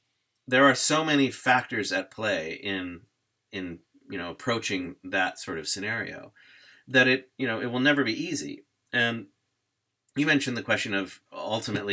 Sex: male